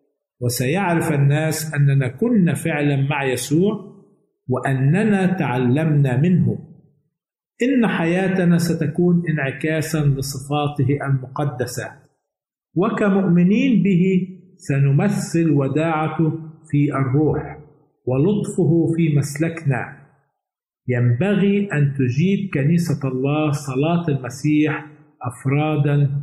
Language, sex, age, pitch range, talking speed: Arabic, male, 50-69, 140-170 Hz, 75 wpm